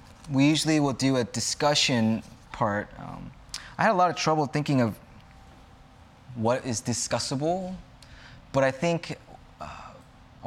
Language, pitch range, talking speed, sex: English, 110-140 Hz, 130 wpm, male